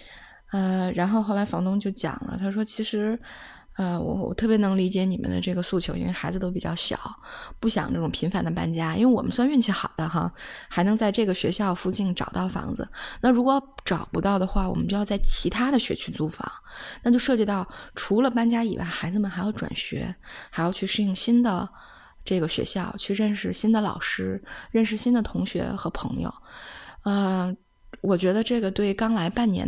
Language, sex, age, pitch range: Chinese, female, 20-39, 180-225 Hz